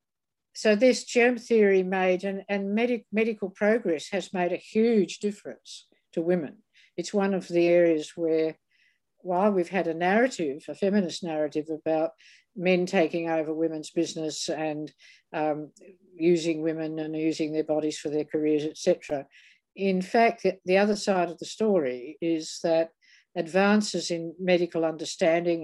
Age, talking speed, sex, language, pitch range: 60-79, 145 wpm, female, English, 155-190 Hz